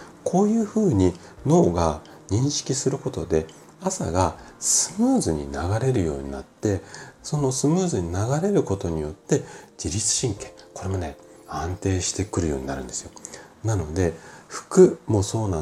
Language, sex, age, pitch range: Japanese, male, 40-59, 85-135 Hz